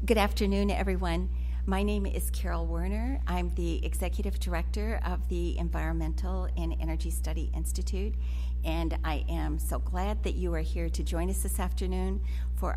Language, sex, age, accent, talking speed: English, female, 50-69, American, 160 wpm